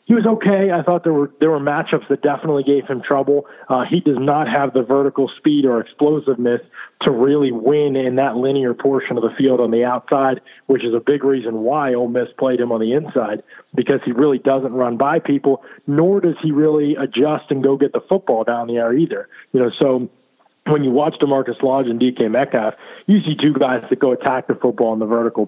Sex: male